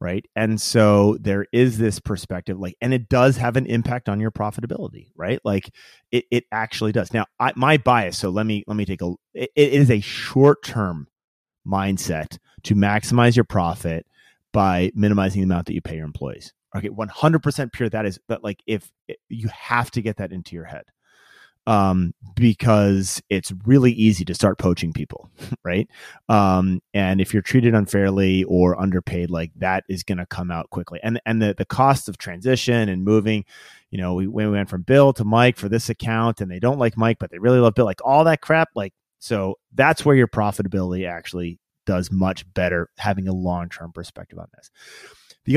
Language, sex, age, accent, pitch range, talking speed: English, male, 30-49, American, 95-120 Hz, 195 wpm